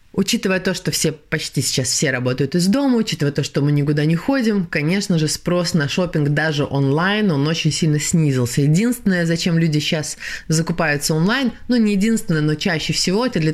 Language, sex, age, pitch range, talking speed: Russian, female, 20-39, 150-195 Hz, 185 wpm